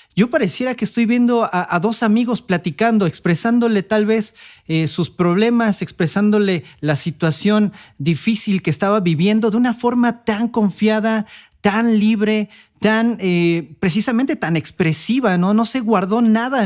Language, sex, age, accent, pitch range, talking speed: Spanish, male, 40-59, Mexican, 155-215 Hz, 145 wpm